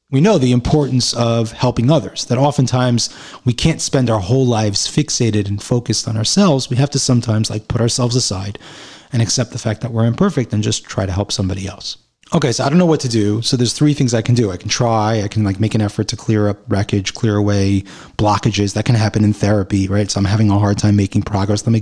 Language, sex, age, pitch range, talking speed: English, male, 30-49, 105-135 Hz, 245 wpm